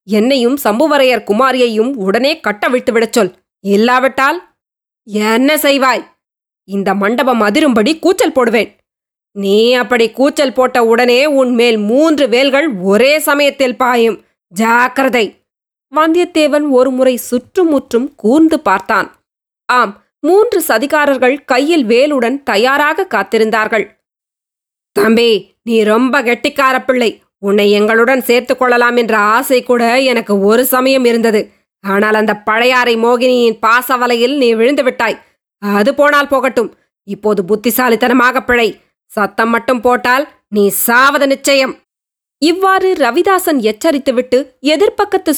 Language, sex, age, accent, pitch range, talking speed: Tamil, female, 20-39, native, 225-290 Hz, 105 wpm